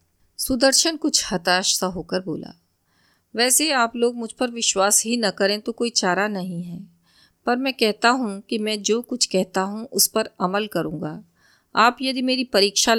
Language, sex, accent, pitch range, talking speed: Hindi, female, native, 180-230 Hz, 175 wpm